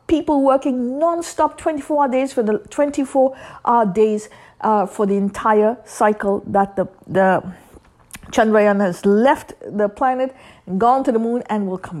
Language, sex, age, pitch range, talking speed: English, female, 50-69, 215-305 Hz, 160 wpm